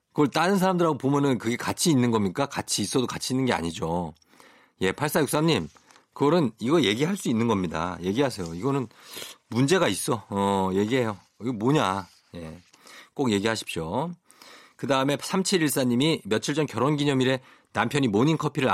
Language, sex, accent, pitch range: Korean, male, native, 95-145 Hz